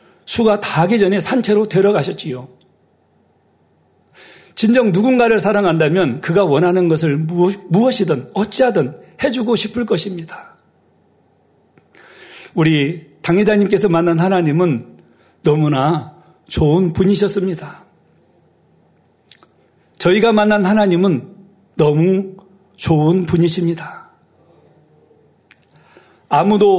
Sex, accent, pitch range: male, native, 165-210 Hz